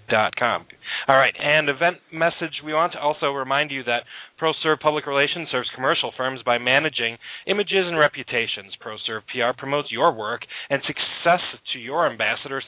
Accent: American